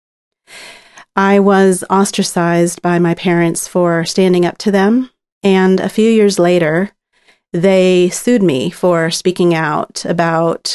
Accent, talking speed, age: American, 130 wpm, 30-49